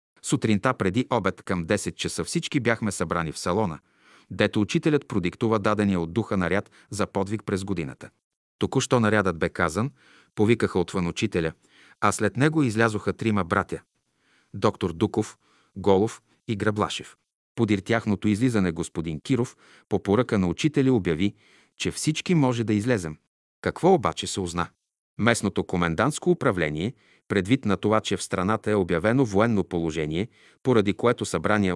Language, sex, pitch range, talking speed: Bulgarian, male, 95-125 Hz, 140 wpm